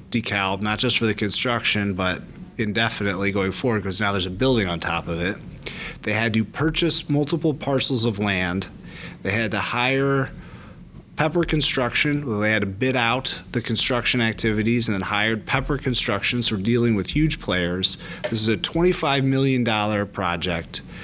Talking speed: 165 wpm